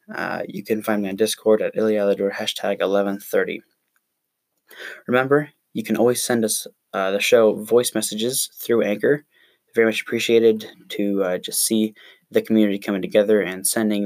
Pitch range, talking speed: 100-115 Hz, 160 wpm